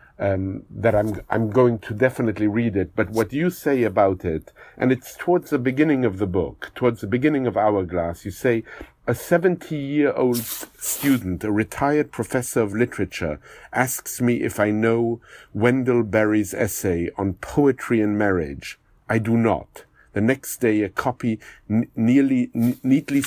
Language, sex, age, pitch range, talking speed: English, male, 50-69, 105-125 Hz, 160 wpm